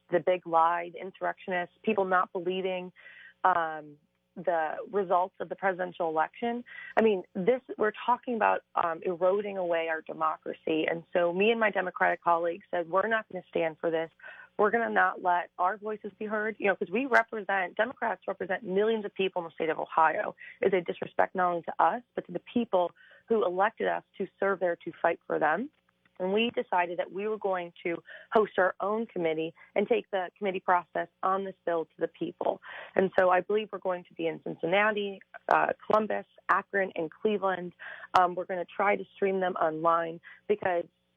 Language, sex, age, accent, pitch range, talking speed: English, female, 30-49, American, 175-210 Hz, 195 wpm